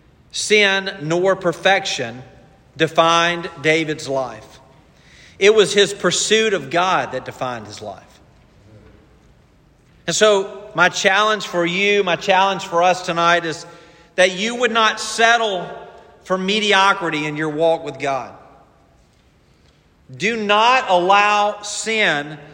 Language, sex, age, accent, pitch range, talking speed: English, male, 40-59, American, 170-220 Hz, 115 wpm